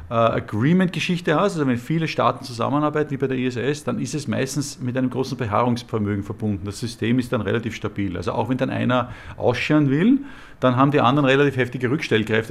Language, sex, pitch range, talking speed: German, male, 110-140 Hz, 190 wpm